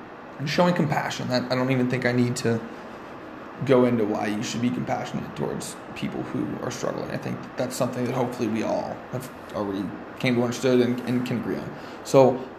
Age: 20-39